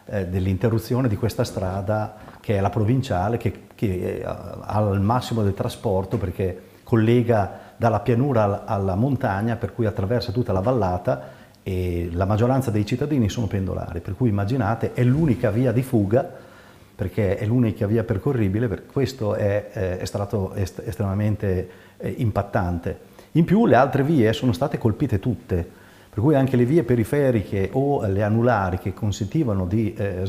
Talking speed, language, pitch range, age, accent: 150 wpm, Italian, 100-125 Hz, 40-59, native